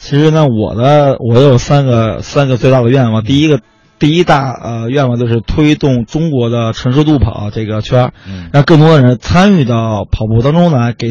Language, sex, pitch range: Chinese, male, 115-150 Hz